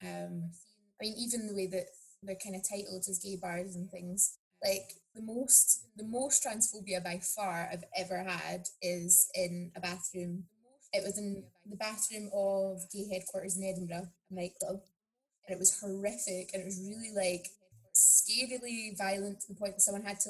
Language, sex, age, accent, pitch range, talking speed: English, female, 20-39, British, 185-205 Hz, 175 wpm